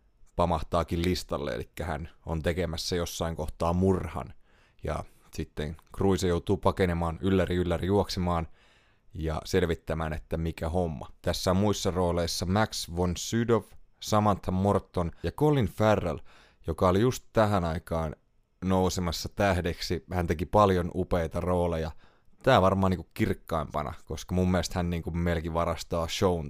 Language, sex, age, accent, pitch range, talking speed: Finnish, male, 30-49, native, 85-95 Hz, 135 wpm